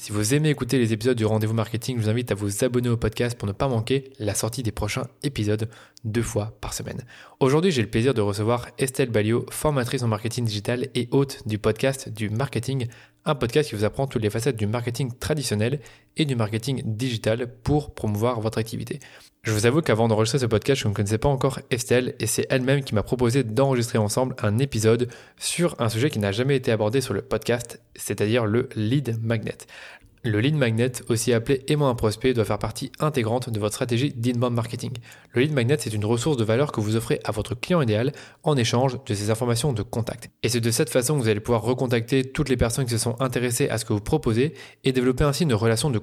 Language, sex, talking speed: French, male, 225 wpm